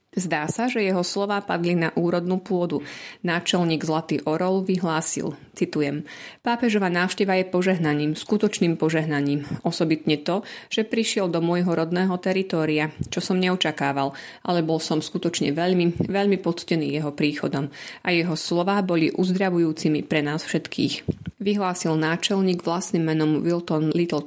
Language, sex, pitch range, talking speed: Slovak, female, 155-190 Hz, 135 wpm